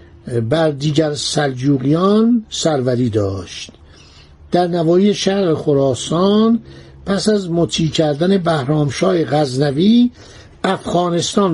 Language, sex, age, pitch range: Persian, male, 60-79, 135-210 Hz